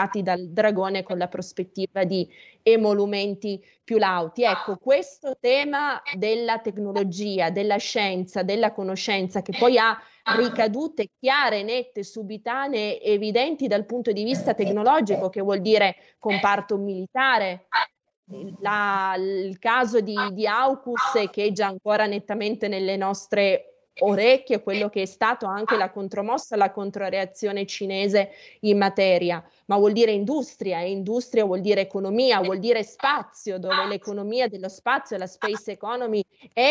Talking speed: 130 wpm